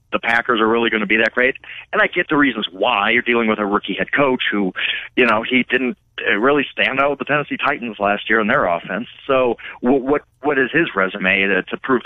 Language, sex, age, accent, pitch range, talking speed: English, male, 40-59, American, 110-160 Hz, 235 wpm